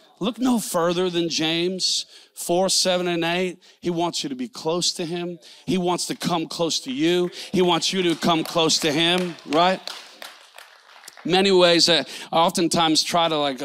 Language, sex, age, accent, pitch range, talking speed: English, male, 40-59, American, 145-195 Hz, 180 wpm